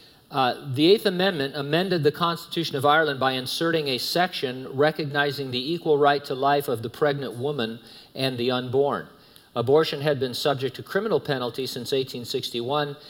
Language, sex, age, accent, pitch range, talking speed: English, male, 50-69, American, 125-150 Hz, 160 wpm